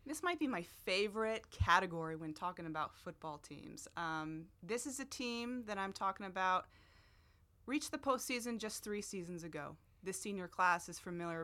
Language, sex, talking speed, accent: English, female, 170 wpm, American